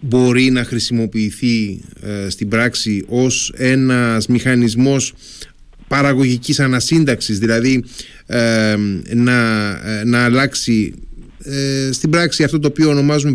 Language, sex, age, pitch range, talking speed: Greek, male, 30-49, 115-140 Hz, 100 wpm